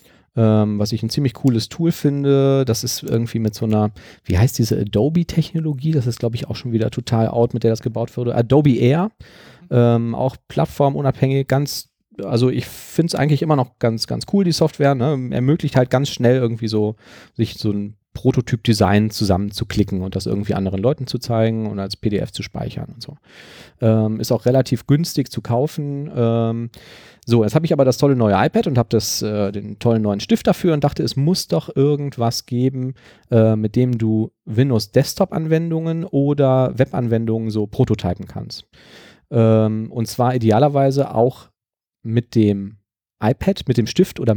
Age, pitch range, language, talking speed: 40-59, 110-145 Hz, German, 175 wpm